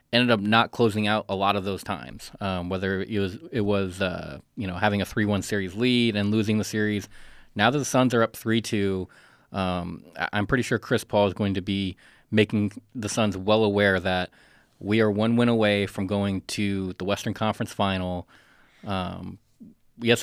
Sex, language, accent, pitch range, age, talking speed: male, English, American, 100-115 Hz, 20-39, 195 wpm